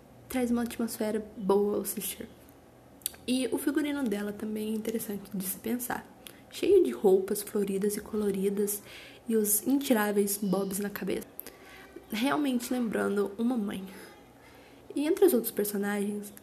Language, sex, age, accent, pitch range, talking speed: Portuguese, female, 20-39, Brazilian, 205-245 Hz, 135 wpm